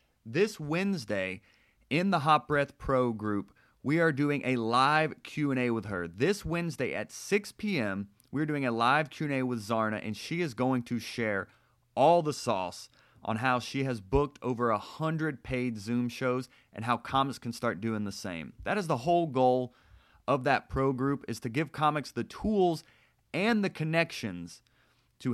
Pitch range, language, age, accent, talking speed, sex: 115-155 Hz, English, 30-49, American, 175 wpm, male